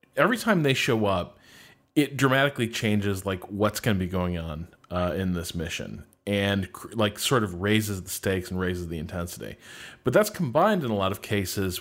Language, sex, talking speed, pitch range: English, male, 195 wpm, 95-110 Hz